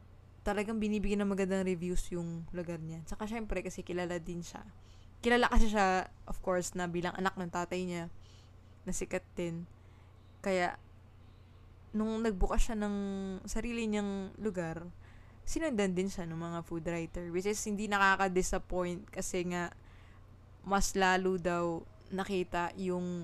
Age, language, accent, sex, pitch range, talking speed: 20-39, Filipino, native, female, 160-200 Hz, 140 wpm